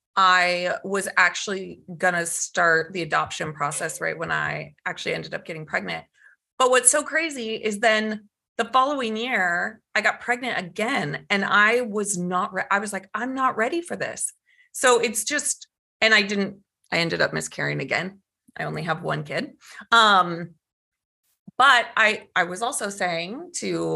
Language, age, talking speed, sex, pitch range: English, 30-49, 165 wpm, female, 175-235 Hz